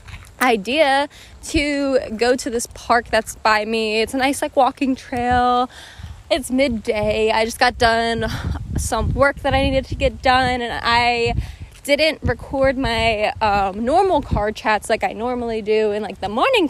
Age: 20-39